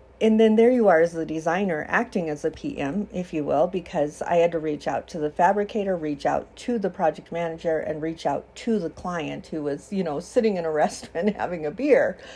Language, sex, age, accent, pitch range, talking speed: English, female, 50-69, American, 165-220 Hz, 230 wpm